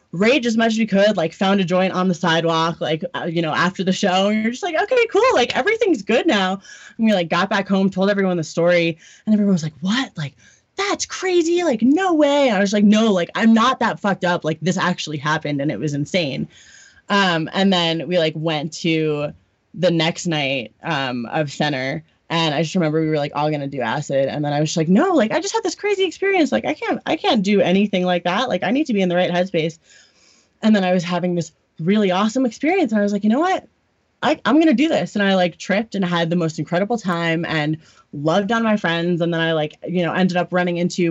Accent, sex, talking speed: American, female, 250 wpm